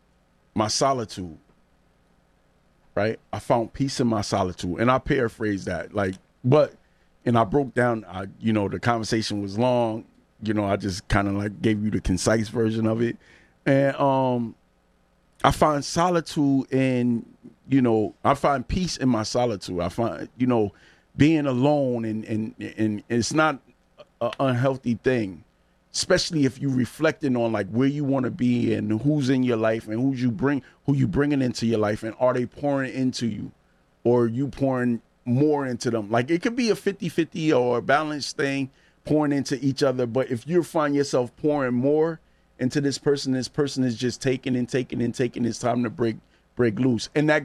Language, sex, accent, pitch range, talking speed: English, male, American, 110-140 Hz, 185 wpm